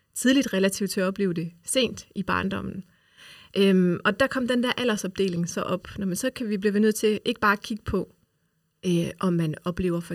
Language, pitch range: Danish, 185-225 Hz